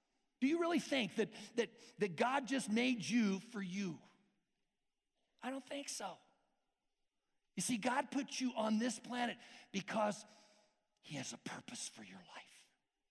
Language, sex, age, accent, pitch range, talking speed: English, male, 50-69, American, 180-240 Hz, 150 wpm